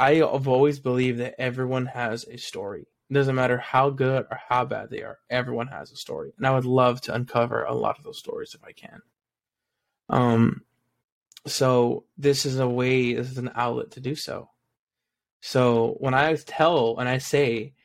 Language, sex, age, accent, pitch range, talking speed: English, male, 20-39, American, 120-140 Hz, 190 wpm